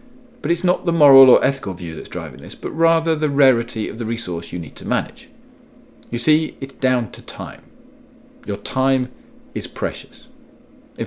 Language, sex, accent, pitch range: English, male, British, 105-160 Hz